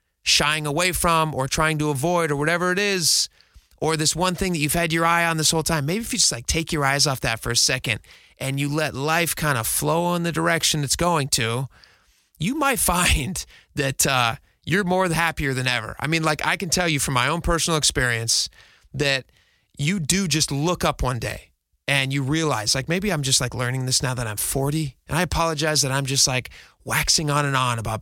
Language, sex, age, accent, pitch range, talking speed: English, male, 30-49, American, 130-170 Hz, 225 wpm